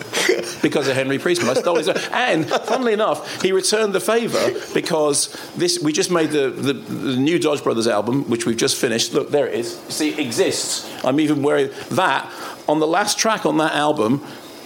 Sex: male